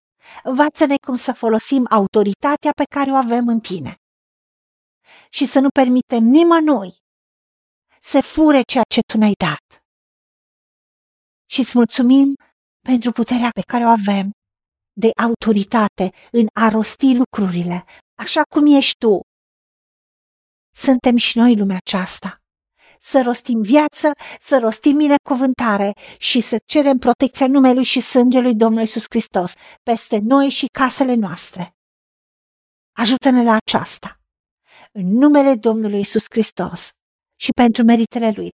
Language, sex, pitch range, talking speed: Romanian, female, 210-270 Hz, 125 wpm